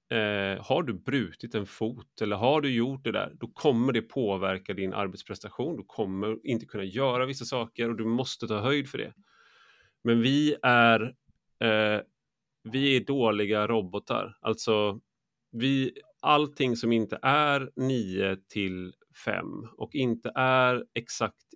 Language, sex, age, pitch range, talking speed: English, male, 30-49, 105-130 Hz, 150 wpm